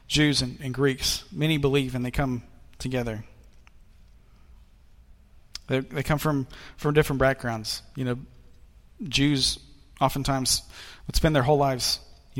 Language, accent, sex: English, American, male